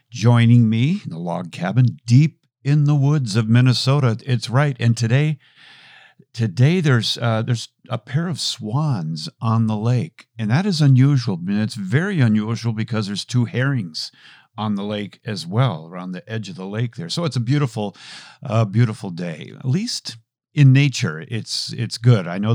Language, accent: English, American